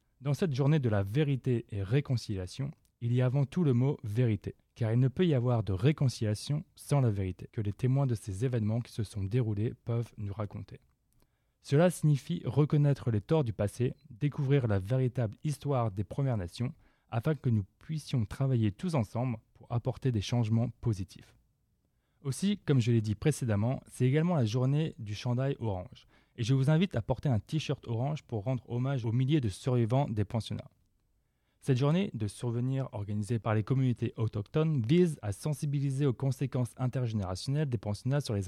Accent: French